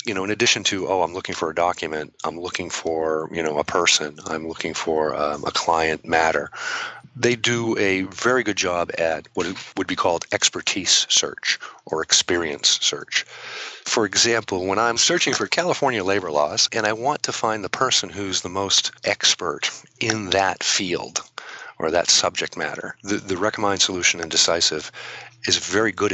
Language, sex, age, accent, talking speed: English, male, 40-59, American, 175 wpm